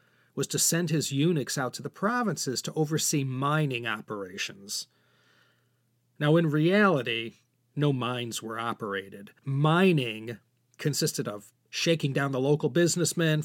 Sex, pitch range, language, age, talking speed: male, 125-160 Hz, English, 40-59, 125 wpm